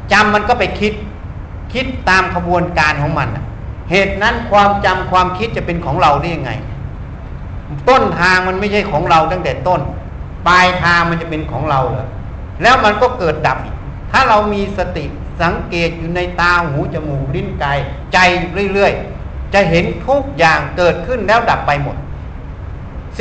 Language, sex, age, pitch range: Thai, male, 60-79, 140-200 Hz